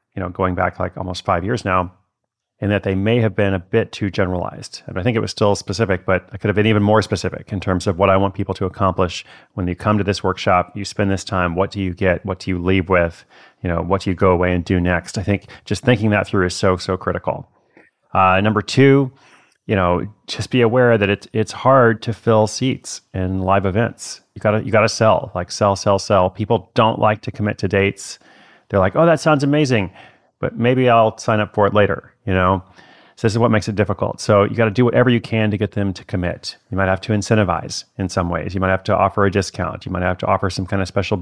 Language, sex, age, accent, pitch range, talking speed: English, male, 30-49, American, 95-110 Hz, 255 wpm